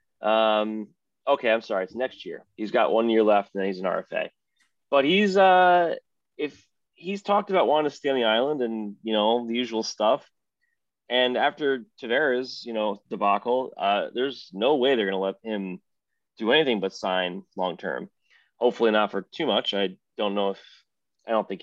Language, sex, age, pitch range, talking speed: English, male, 20-39, 100-130 Hz, 190 wpm